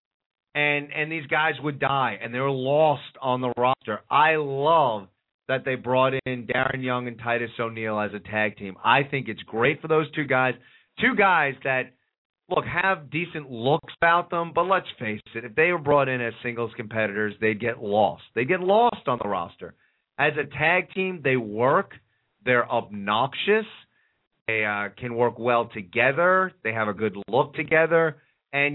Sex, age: male, 30-49